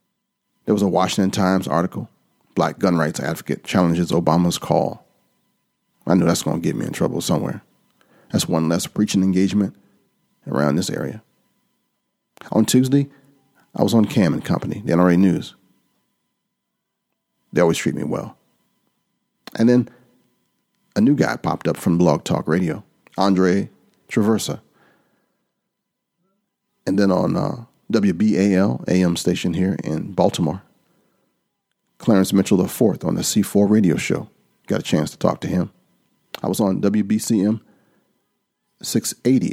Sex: male